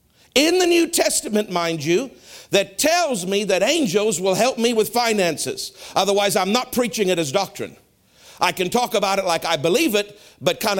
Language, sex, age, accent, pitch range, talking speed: English, male, 50-69, American, 155-210 Hz, 190 wpm